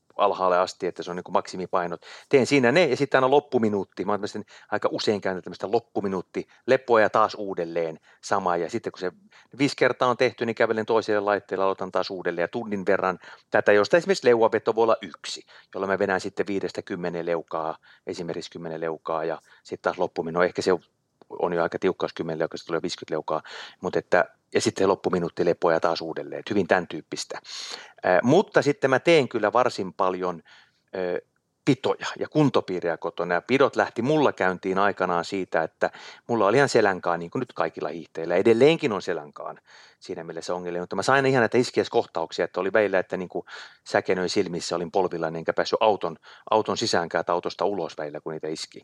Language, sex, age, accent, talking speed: Finnish, male, 30-49, native, 190 wpm